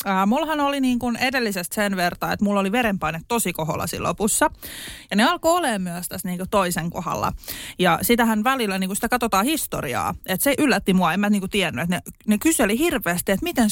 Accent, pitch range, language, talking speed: native, 185-250 Hz, Finnish, 205 wpm